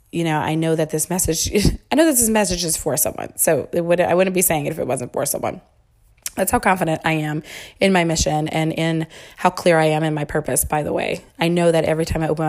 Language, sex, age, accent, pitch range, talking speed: English, female, 20-39, American, 155-180 Hz, 255 wpm